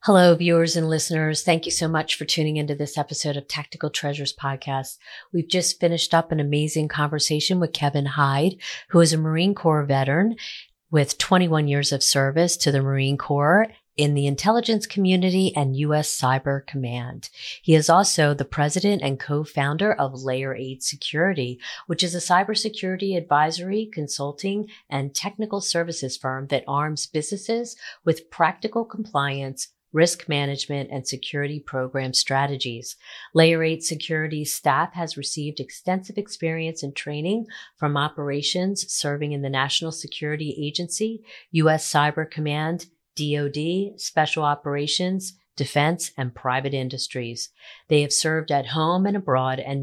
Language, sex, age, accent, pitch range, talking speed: English, female, 40-59, American, 140-170 Hz, 145 wpm